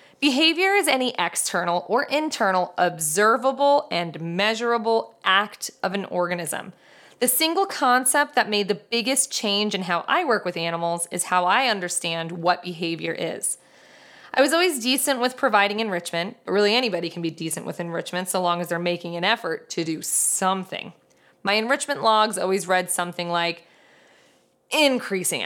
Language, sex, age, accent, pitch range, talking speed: English, female, 20-39, American, 180-265 Hz, 160 wpm